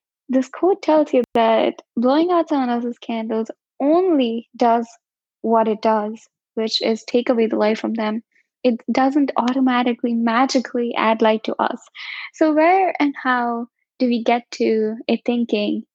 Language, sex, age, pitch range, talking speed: English, female, 10-29, 225-280 Hz, 155 wpm